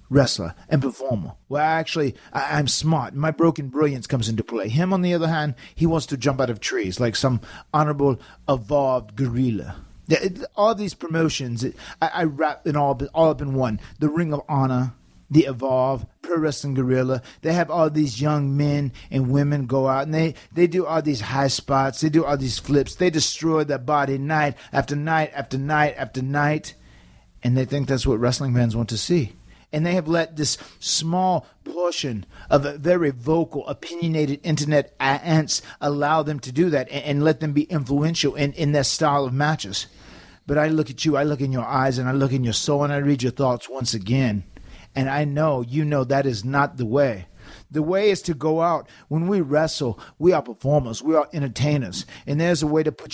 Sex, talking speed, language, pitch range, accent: male, 210 wpm, English, 130-155 Hz, American